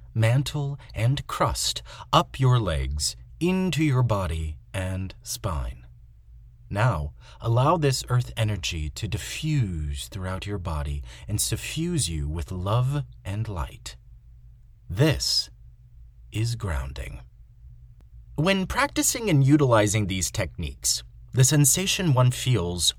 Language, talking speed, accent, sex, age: English, 105 wpm, American, male, 30-49